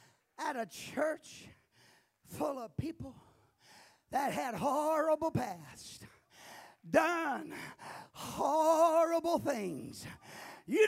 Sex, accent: male, American